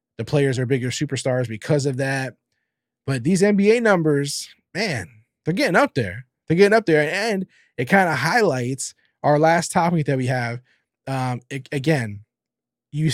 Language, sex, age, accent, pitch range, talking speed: English, male, 20-39, American, 130-165 Hz, 160 wpm